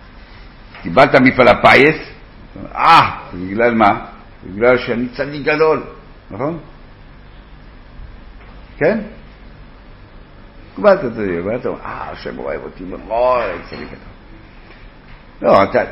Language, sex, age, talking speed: Hebrew, male, 60-79, 75 wpm